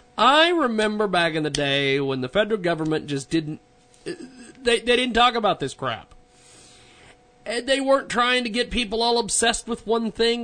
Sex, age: male, 40-59